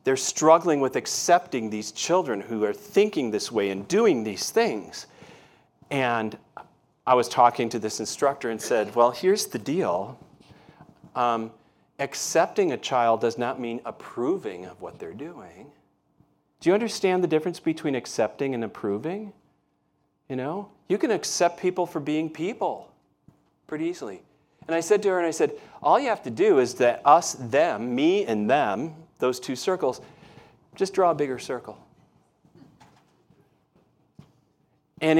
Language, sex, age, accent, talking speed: English, male, 40-59, American, 150 wpm